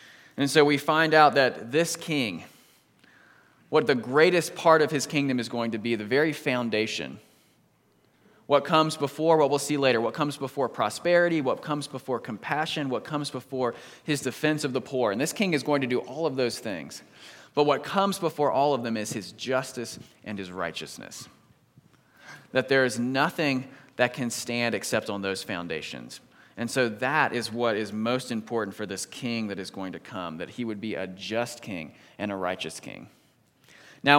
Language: English